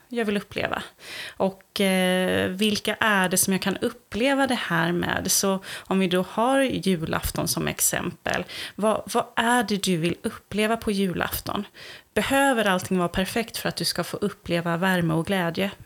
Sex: female